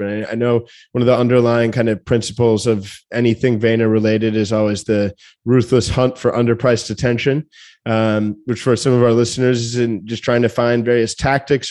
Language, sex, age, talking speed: English, male, 20-39, 185 wpm